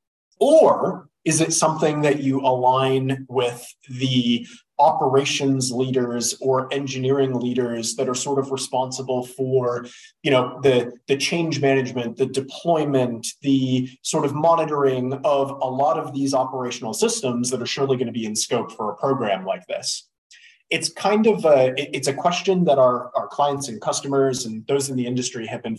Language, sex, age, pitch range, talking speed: English, male, 30-49, 125-155 Hz, 170 wpm